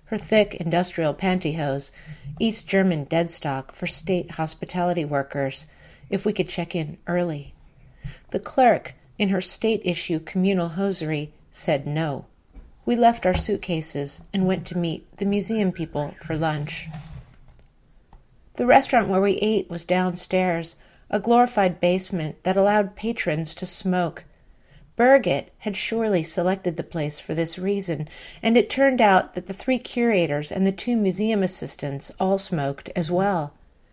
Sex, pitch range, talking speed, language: female, 160-200 Hz, 140 wpm, English